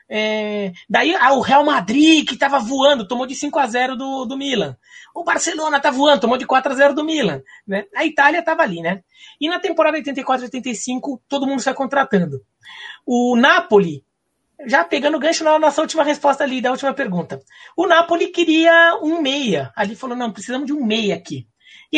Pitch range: 225-315 Hz